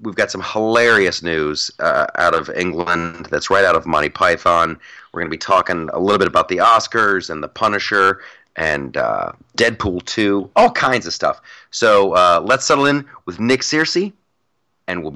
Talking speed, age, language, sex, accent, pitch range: 185 wpm, 30-49, English, male, American, 115-185 Hz